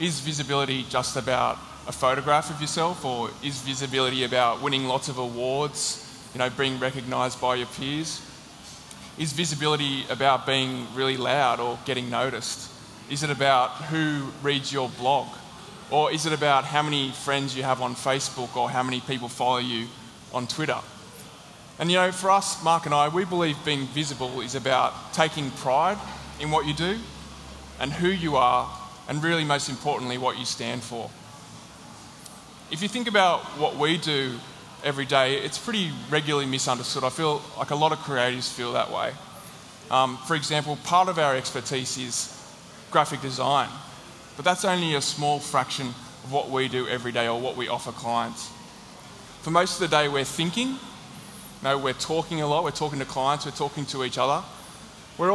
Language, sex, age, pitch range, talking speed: English, male, 20-39, 130-155 Hz, 175 wpm